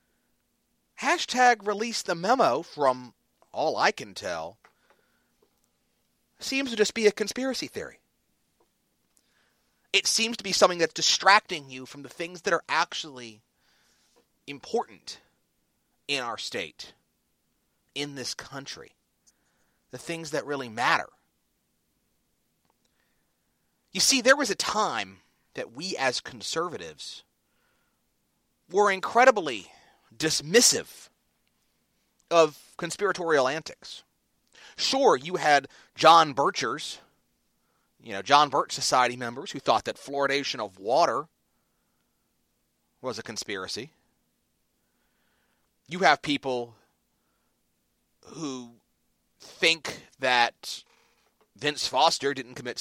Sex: male